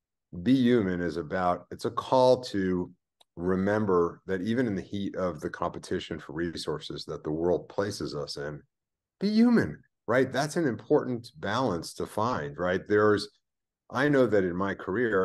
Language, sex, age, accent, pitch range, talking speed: English, male, 50-69, American, 85-115 Hz, 165 wpm